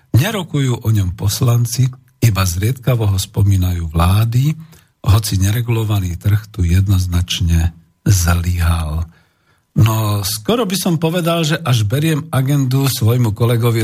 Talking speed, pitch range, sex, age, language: 115 wpm, 100-130 Hz, male, 50-69, Slovak